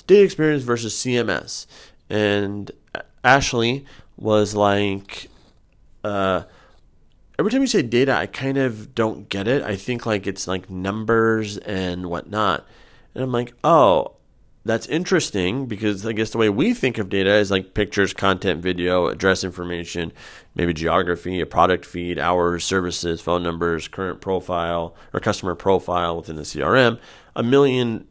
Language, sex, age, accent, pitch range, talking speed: English, male, 30-49, American, 90-115 Hz, 145 wpm